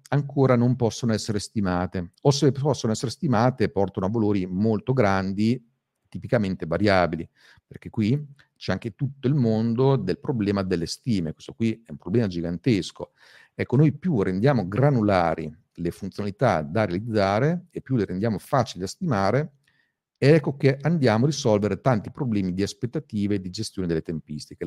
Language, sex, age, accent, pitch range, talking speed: Italian, male, 40-59, native, 95-135 Hz, 155 wpm